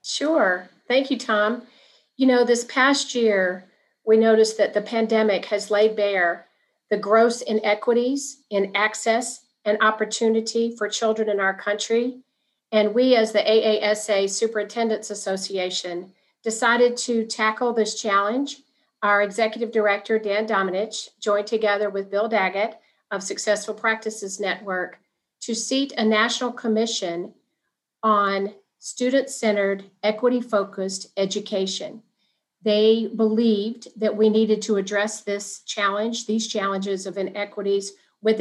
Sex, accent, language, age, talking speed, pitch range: female, American, English, 40-59, 120 wpm, 205-230 Hz